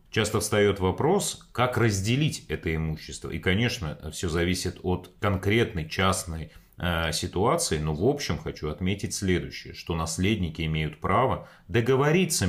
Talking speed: 130 wpm